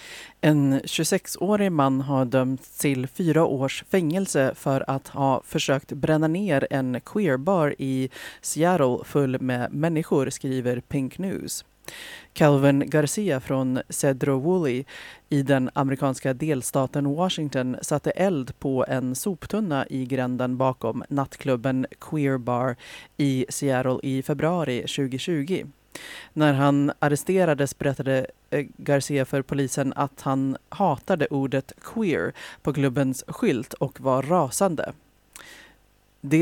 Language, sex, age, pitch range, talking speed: Swedish, female, 30-49, 130-155 Hz, 115 wpm